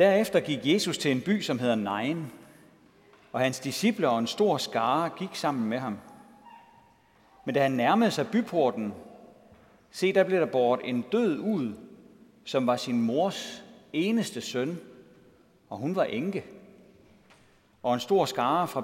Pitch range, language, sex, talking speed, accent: 130-205 Hz, Danish, male, 155 wpm, native